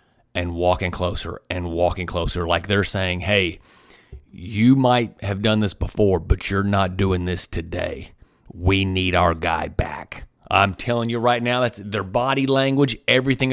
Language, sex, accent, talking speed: English, male, American, 165 wpm